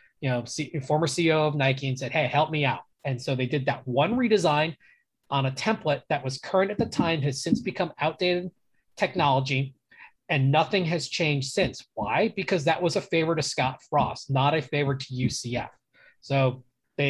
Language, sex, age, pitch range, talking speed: English, male, 20-39, 135-170 Hz, 190 wpm